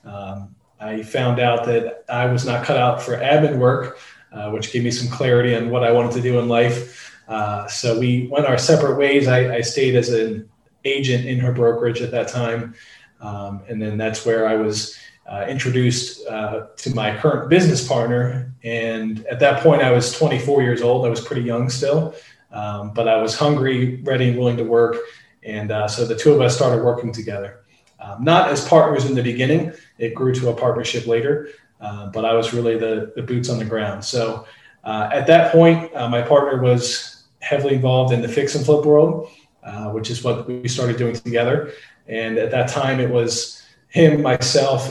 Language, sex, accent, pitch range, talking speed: English, male, American, 115-135 Hz, 200 wpm